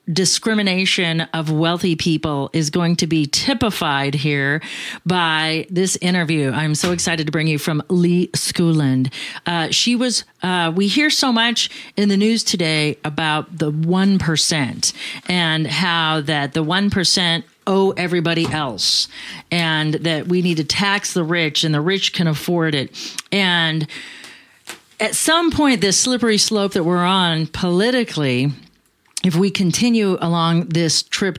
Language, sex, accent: English, female, American